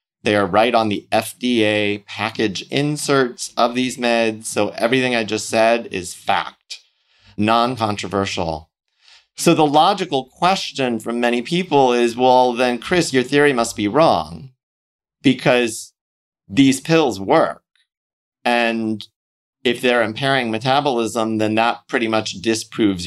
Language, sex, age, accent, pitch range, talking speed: English, male, 30-49, American, 110-135 Hz, 125 wpm